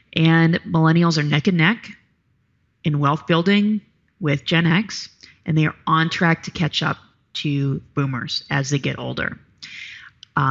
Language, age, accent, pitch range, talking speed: English, 30-49, American, 145-185 Hz, 155 wpm